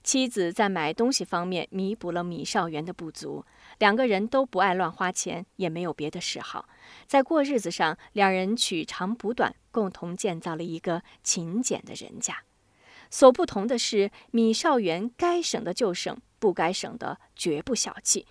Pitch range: 180-250 Hz